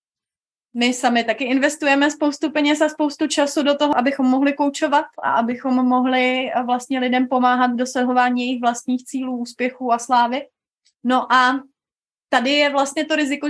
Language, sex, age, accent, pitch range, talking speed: Czech, female, 30-49, native, 245-285 Hz, 155 wpm